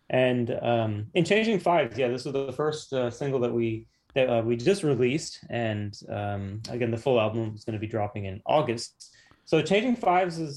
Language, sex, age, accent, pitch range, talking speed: English, male, 30-49, American, 110-135 Hz, 205 wpm